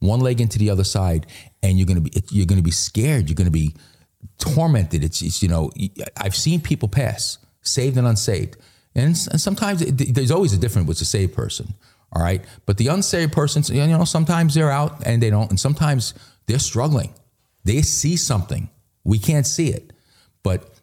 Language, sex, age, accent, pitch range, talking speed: English, male, 40-59, American, 95-130 Hz, 195 wpm